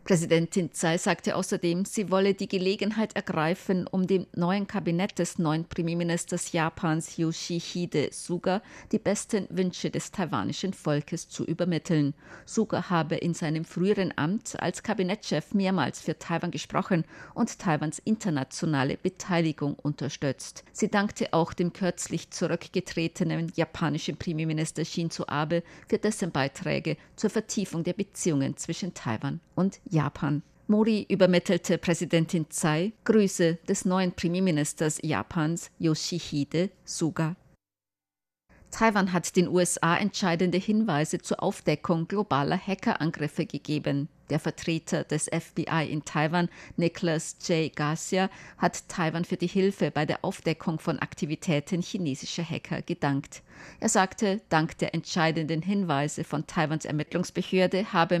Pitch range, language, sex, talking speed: 155-185 Hz, German, female, 125 wpm